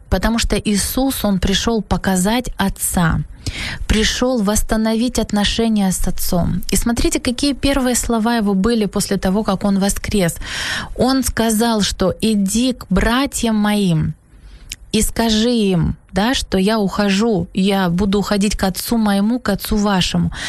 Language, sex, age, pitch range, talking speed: Ukrainian, female, 20-39, 195-245 Hz, 140 wpm